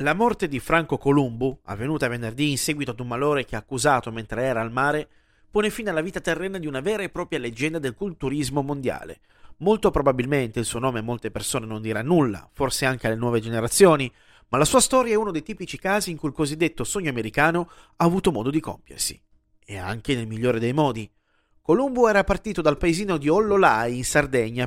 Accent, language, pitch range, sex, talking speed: native, Italian, 125-180 Hz, male, 205 wpm